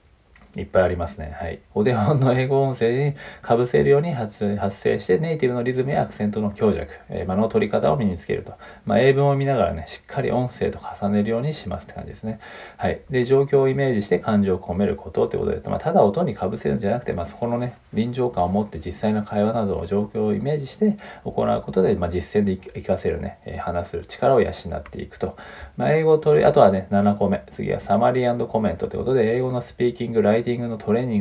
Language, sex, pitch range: Japanese, male, 95-130 Hz